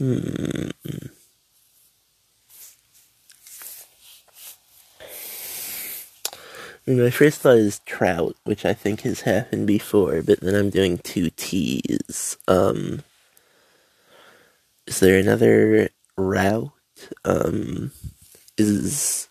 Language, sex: English, male